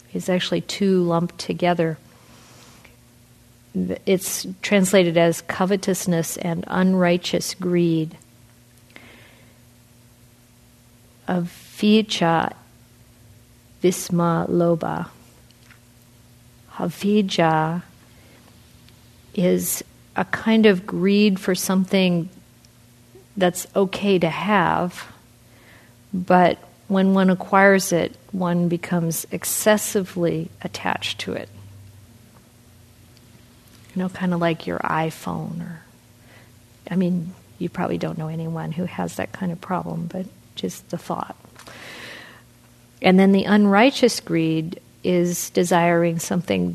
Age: 40-59